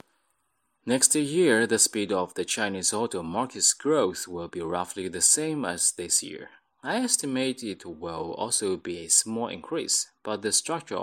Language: Chinese